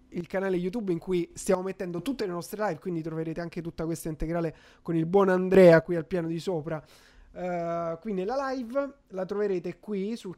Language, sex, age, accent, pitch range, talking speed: Italian, male, 20-39, native, 170-205 Hz, 195 wpm